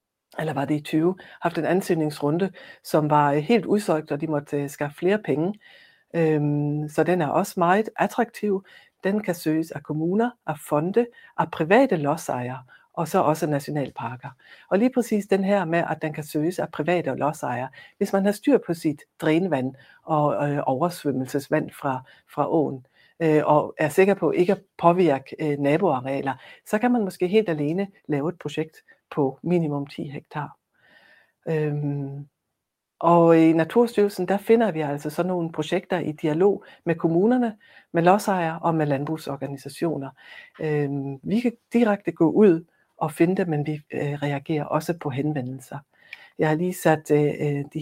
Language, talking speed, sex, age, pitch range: Danish, 155 wpm, female, 60-79, 145-185 Hz